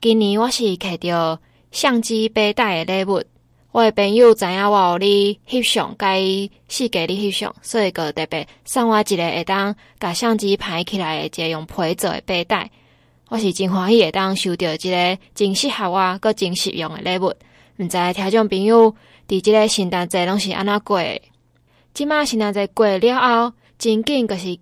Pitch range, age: 185-225 Hz, 20-39